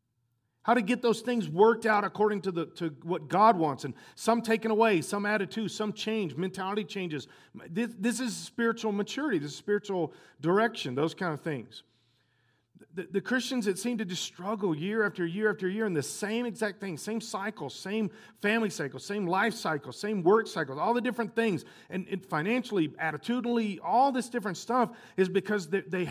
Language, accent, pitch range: English, American, 155-220 Hz